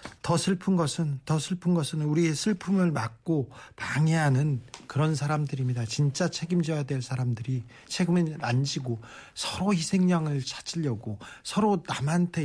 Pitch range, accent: 130-160 Hz, native